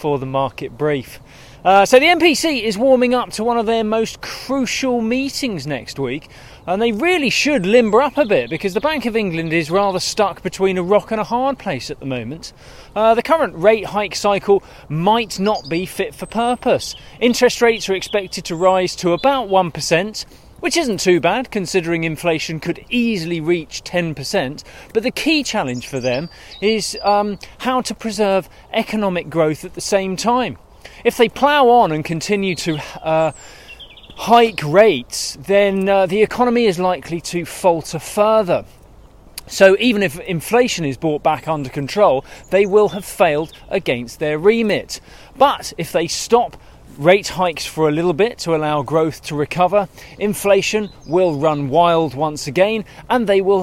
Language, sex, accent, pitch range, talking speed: English, male, British, 155-220 Hz, 170 wpm